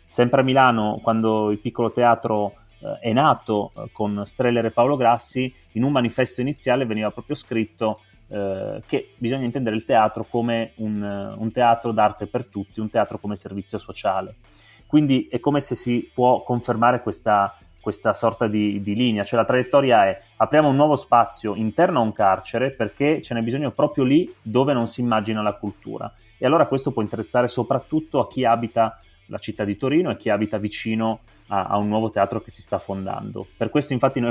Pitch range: 105-125 Hz